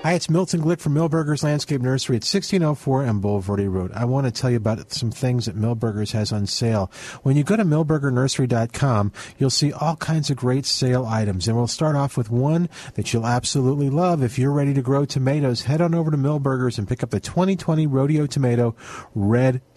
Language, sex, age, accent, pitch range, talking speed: English, male, 50-69, American, 110-145 Hz, 205 wpm